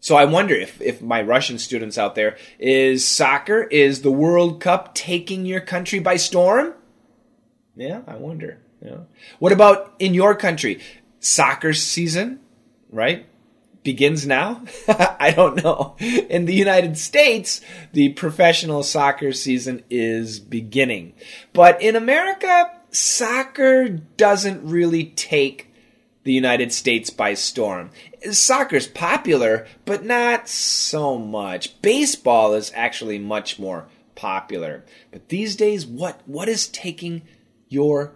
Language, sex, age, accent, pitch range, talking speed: English, male, 20-39, American, 140-200 Hz, 125 wpm